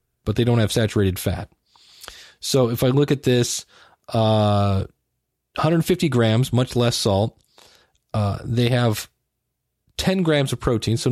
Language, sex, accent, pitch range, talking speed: English, male, American, 105-145 Hz, 140 wpm